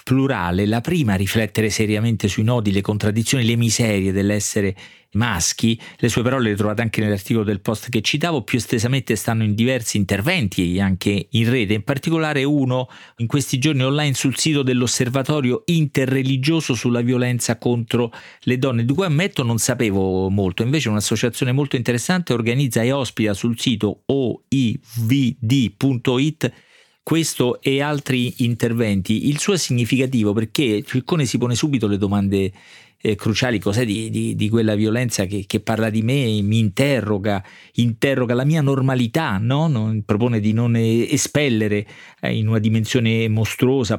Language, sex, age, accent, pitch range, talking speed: Italian, male, 40-59, native, 105-130 Hz, 155 wpm